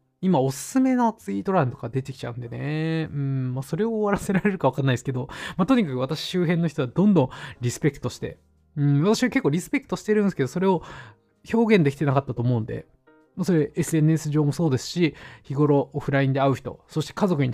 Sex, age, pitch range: male, 20-39, 130-185 Hz